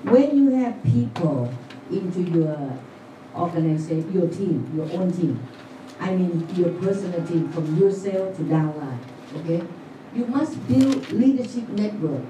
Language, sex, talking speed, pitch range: Vietnamese, female, 130 wpm, 165-250 Hz